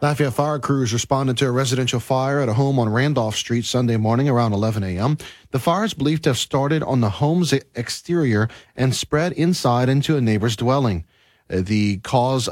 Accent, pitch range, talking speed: American, 115-145 Hz, 185 wpm